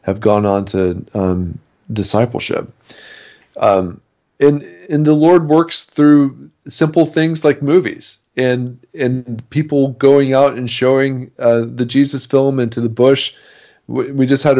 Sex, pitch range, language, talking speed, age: male, 110-130 Hz, English, 145 wpm, 40-59